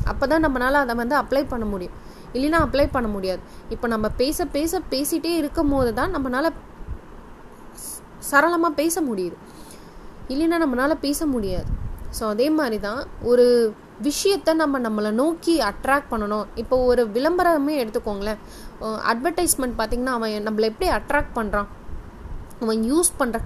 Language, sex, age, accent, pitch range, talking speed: Tamil, female, 20-39, native, 220-295 Hz, 35 wpm